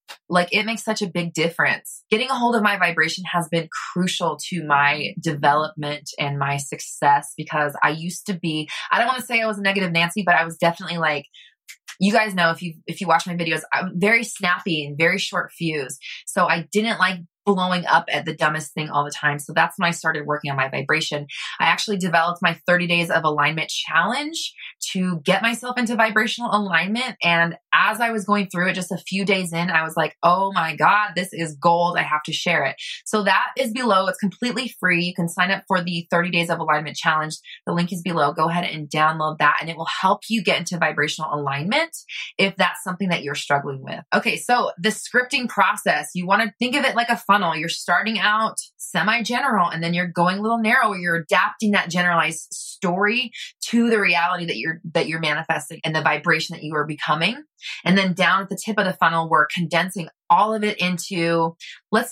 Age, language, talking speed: 20-39, English, 220 wpm